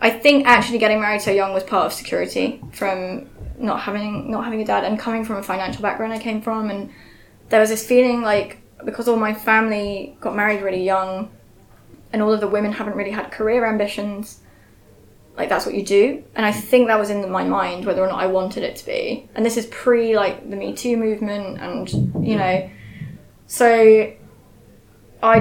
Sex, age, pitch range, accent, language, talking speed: female, 10-29, 195-220 Hz, British, English, 205 wpm